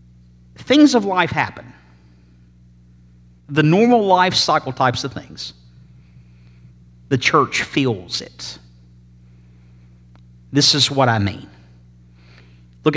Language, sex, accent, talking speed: English, male, American, 95 wpm